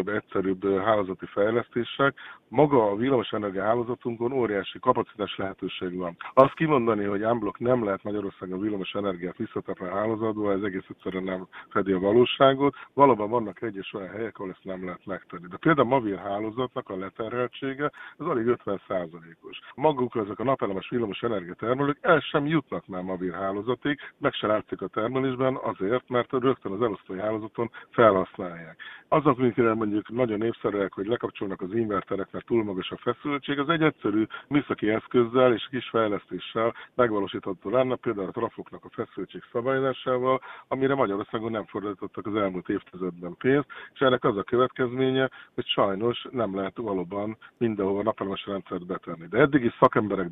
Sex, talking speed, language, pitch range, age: male, 150 wpm, Hungarian, 95-130 Hz, 50-69